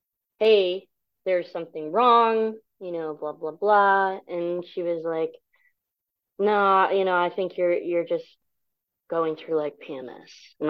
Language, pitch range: English, 150-180 Hz